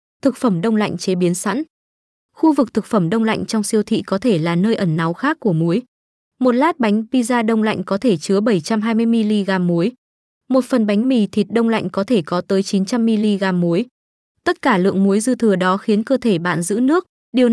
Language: Vietnamese